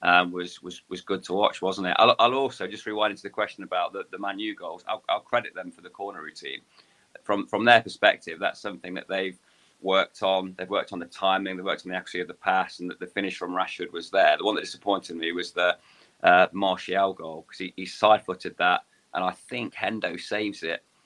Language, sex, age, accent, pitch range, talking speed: English, male, 30-49, British, 95-105 Hz, 235 wpm